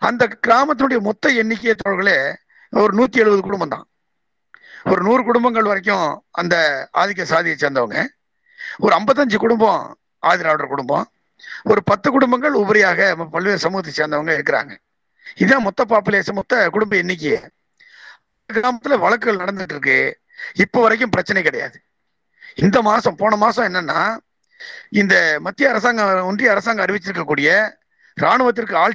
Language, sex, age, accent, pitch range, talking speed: Tamil, male, 50-69, native, 190-245 Hz, 120 wpm